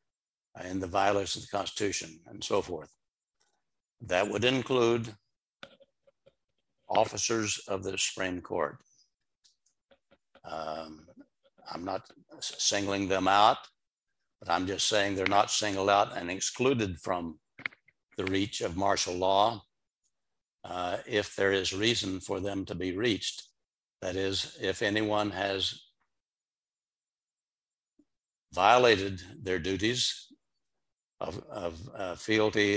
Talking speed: 110 wpm